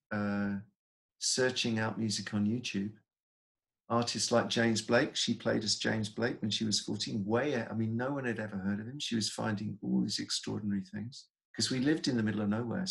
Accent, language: British, English